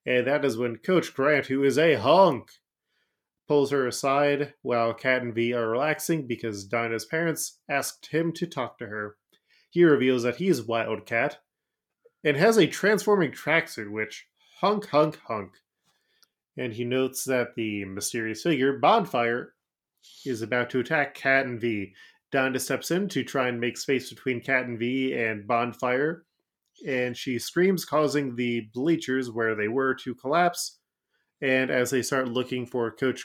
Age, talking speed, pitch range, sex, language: 20-39, 160 wpm, 115-145 Hz, male, English